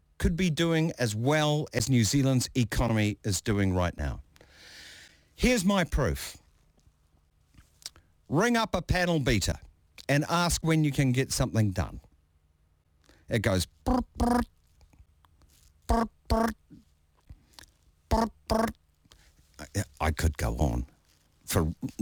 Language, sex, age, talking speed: English, male, 50-69, 100 wpm